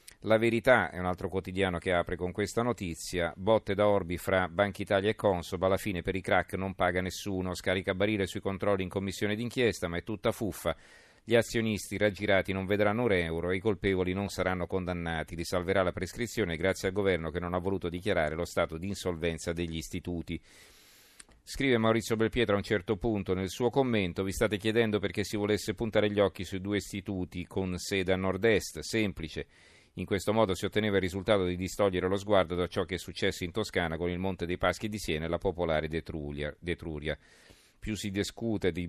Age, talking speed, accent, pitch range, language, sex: 40-59, 200 wpm, native, 90-105 Hz, Italian, male